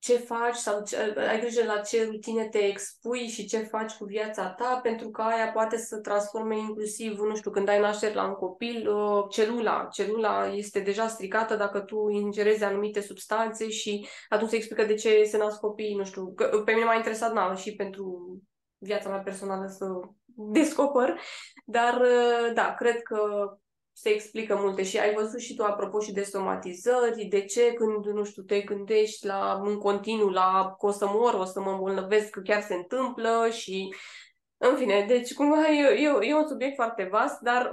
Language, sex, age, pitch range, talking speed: Romanian, female, 20-39, 205-235 Hz, 190 wpm